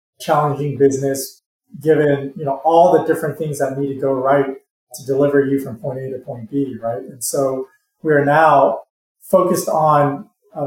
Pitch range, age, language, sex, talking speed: 130-150 Hz, 30-49, English, male, 180 wpm